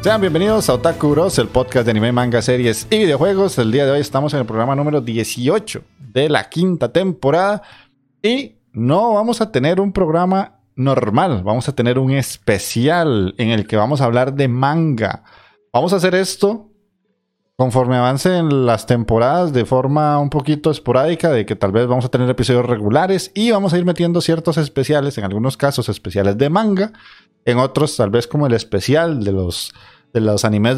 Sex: male